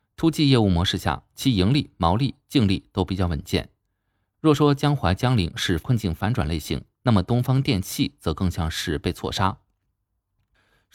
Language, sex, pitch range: Chinese, male, 90-130 Hz